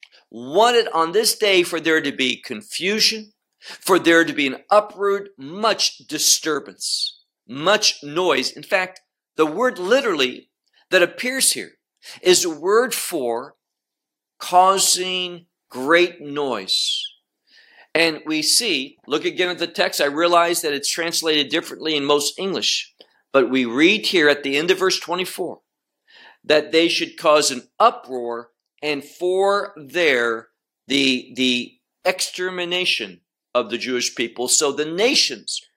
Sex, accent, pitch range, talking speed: male, American, 140-185 Hz, 135 wpm